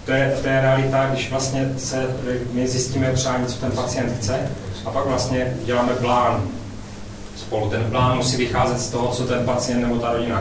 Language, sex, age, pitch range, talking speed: Czech, male, 30-49, 110-125 Hz, 190 wpm